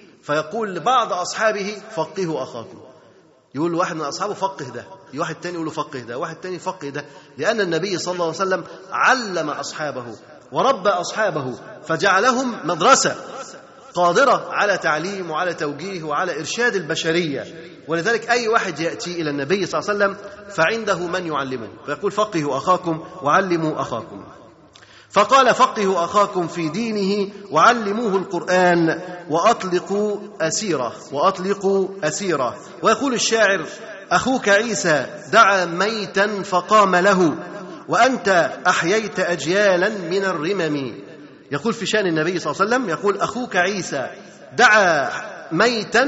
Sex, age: male, 30-49